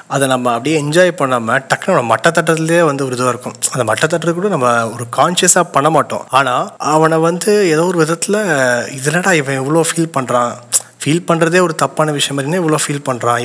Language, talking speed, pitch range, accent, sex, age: Tamil, 175 wpm, 125-160 Hz, native, male, 30-49